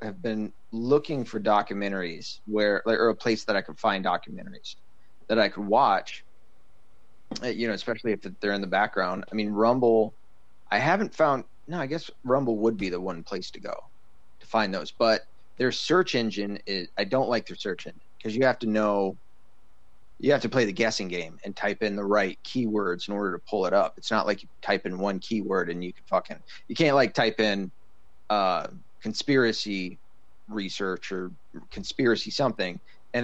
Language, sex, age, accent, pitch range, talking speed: English, male, 30-49, American, 95-115 Hz, 190 wpm